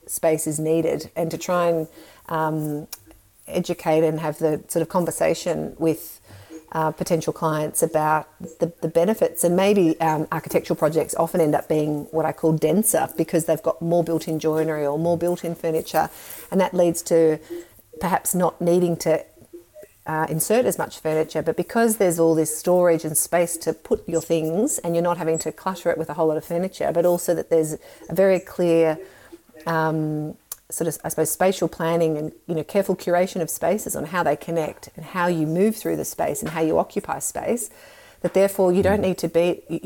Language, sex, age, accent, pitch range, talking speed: English, female, 40-59, Australian, 160-185 Hz, 195 wpm